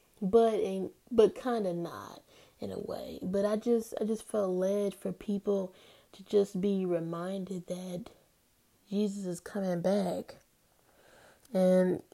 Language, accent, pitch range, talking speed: English, American, 180-205 Hz, 140 wpm